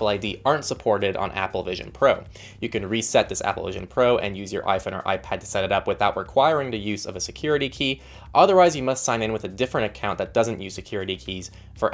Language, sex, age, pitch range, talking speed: English, male, 20-39, 100-125 Hz, 235 wpm